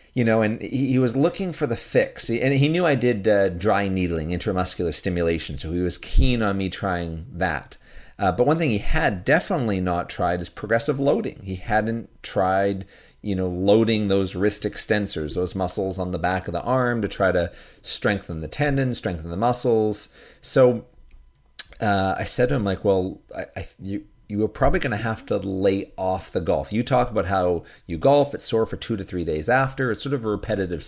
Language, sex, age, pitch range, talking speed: English, male, 40-59, 90-120 Hz, 205 wpm